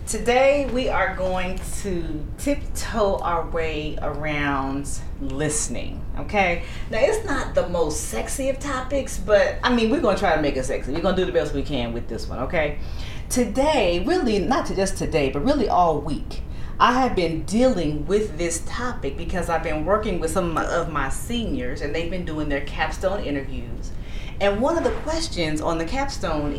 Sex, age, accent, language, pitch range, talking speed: female, 30-49, American, English, 155-235 Hz, 185 wpm